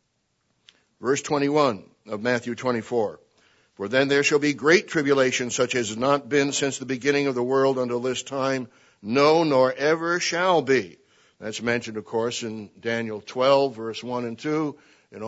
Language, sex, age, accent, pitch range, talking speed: English, male, 60-79, American, 120-145 Hz, 170 wpm